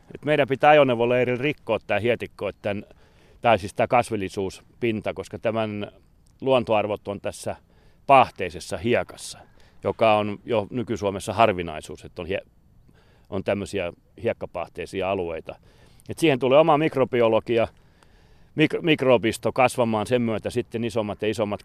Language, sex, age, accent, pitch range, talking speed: Finnish, male, 40-59, native, 95-125 Hz, 120 wpm